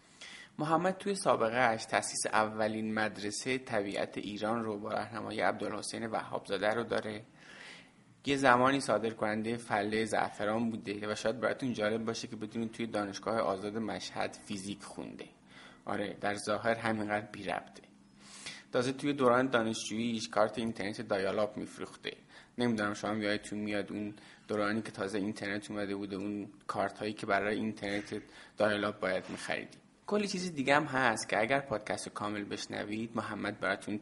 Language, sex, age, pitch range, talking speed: Persian, male, 30-49, 105-115 Hz, 145 wpm